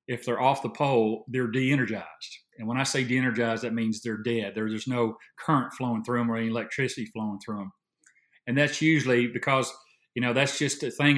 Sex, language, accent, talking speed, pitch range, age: male, English, American, 210 wpm, 120-150 Hz, 40-59